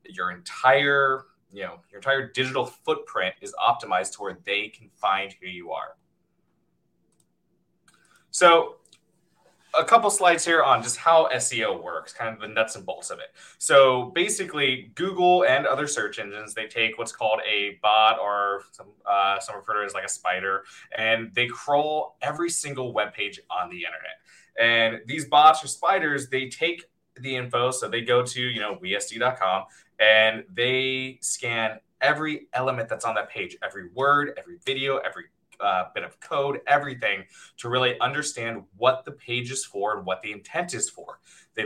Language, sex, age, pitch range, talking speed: English, male, 20-39, 110-140 Hz, 175 wpm